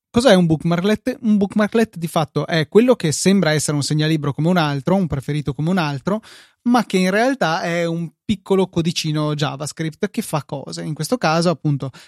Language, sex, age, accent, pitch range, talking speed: Italian, male, 20-39, native, 145-185 Hz, 190 wpm